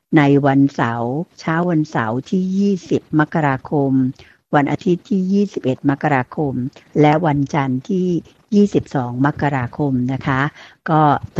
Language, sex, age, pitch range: Thai, female, 60-79, 135-160 Hz